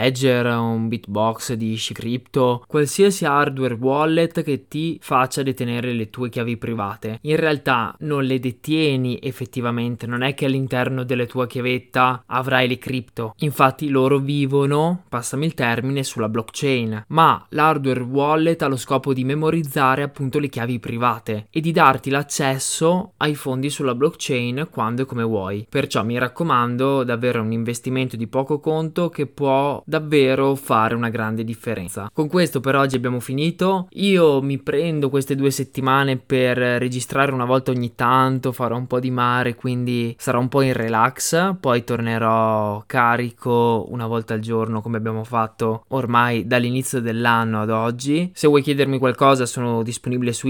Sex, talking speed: male, 155 wpm